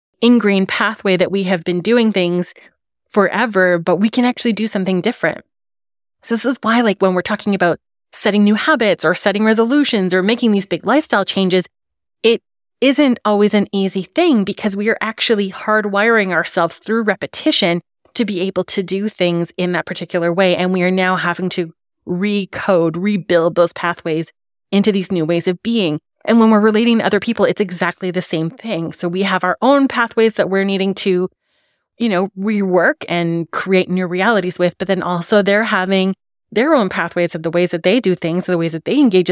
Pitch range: 175-220 Hz